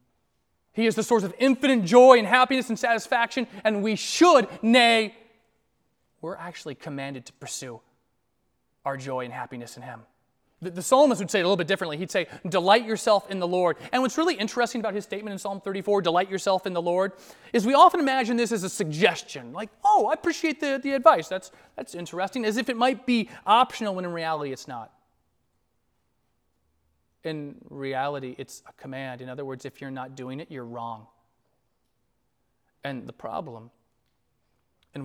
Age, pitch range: 30-49, 145-230 Hz